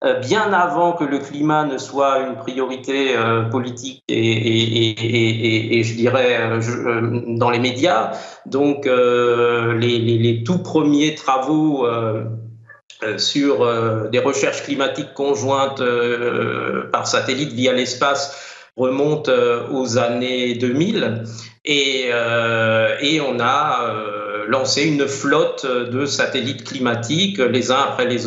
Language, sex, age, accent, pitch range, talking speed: French, male, 50-69, French, 120-145 Hz, 135 wpm